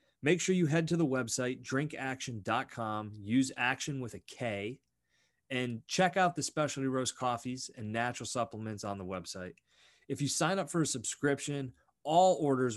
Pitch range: 105-135 Hz